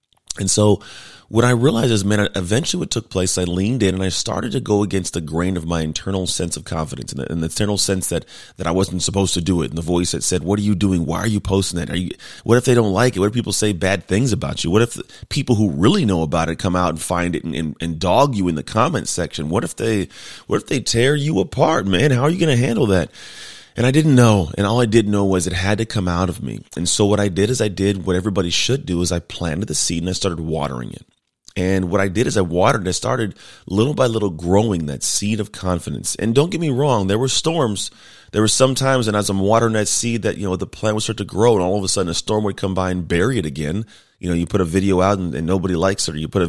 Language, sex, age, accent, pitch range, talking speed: English, male, 30-49, American, 90-110 Hz, 290 wpm